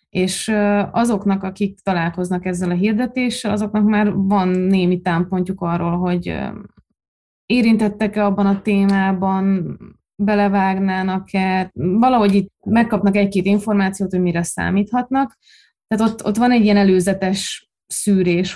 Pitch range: 185-220 Hz